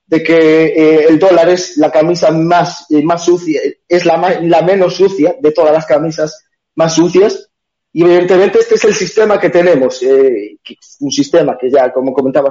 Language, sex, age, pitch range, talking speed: Spanish, male, 30-49, 155-190 Hz, 185 wpm